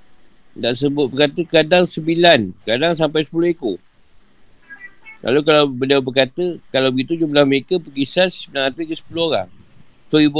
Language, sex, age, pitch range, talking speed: Malay, male, 50-69, 115-155 Hz, 140 wpm